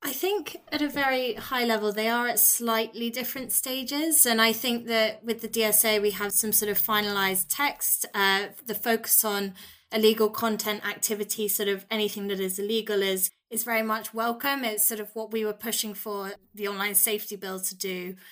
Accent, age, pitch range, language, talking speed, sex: British, 20-39, 200-240 Hz, English, 195 wpm, female